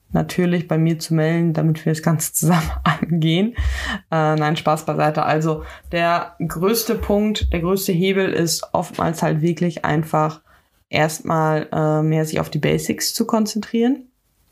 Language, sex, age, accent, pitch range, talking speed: German, female, 20-39, German, 165-200 Hz, 150 wpm